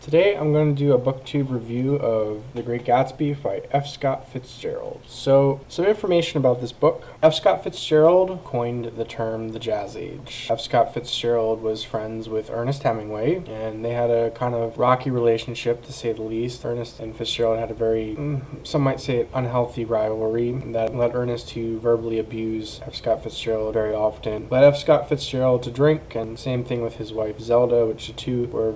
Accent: American